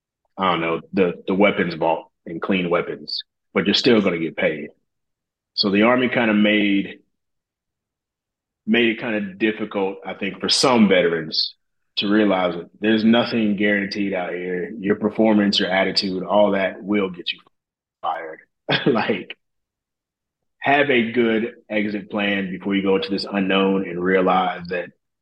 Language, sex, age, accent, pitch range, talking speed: English, male, 30-49, American, 95-110 Hz, 155 wpm